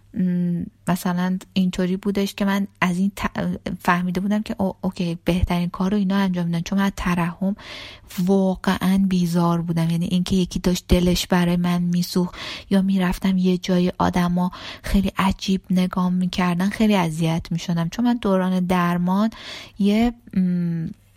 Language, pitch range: Persian, 175-200 Hz